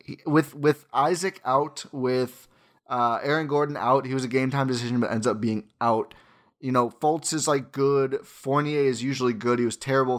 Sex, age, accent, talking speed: male, 20-39, American, 195 wpm